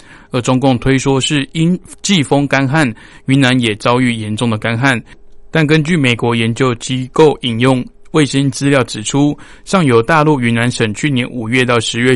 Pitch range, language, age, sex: 115-145 Hz, Chinese, 20-39, male